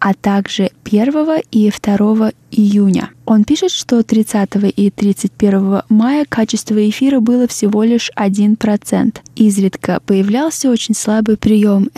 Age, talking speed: 20-39, 120 wpm